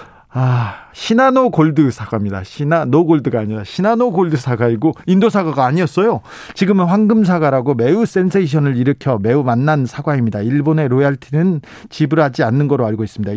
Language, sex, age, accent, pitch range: Korean, male, 40-59, native, 125-175 Hz